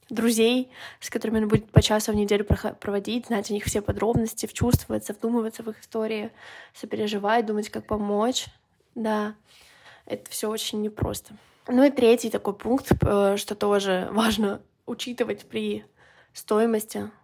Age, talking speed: 20-39, 140 wpm